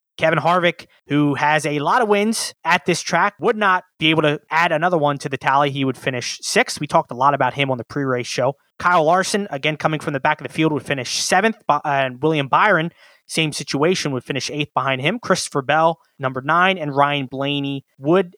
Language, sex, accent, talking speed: English, male, American, 220 wpm